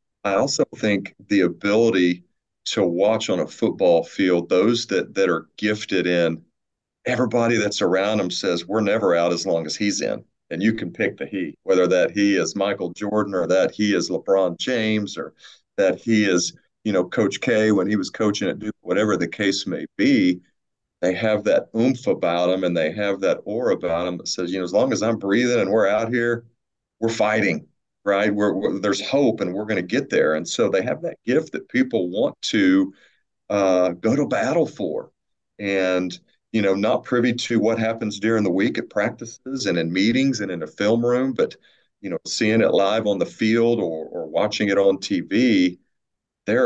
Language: English